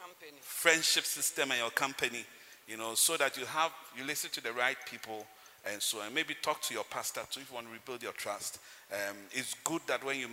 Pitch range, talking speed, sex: 120-170 Hz, 225 wpm, male